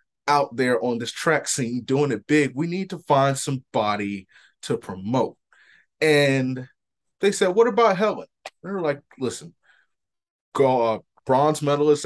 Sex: male